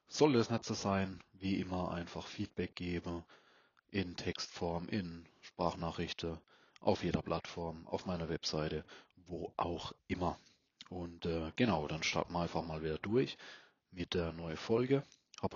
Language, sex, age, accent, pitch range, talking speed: German, male, 30-49, German, 85-95 Hz, 150 wpm